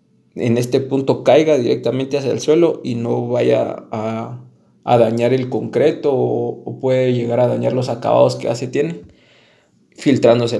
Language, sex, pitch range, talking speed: Spanish, male, 115-140 Hz, 160 wpm